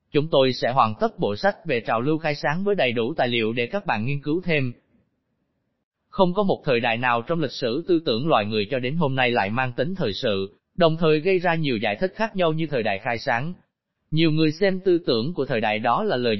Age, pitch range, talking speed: 20-39, 120-170 Hz, 255 wpm